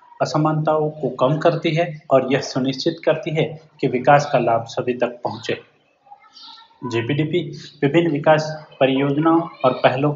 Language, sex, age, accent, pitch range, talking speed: Gujarati, male, 30-49, native, 135-160 Hz, 135 wpm